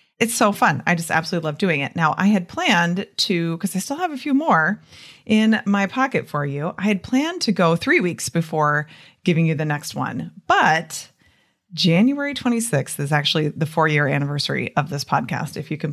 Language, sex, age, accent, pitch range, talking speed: English, female, 30-49, American, 150-205 Hz, 205 wpm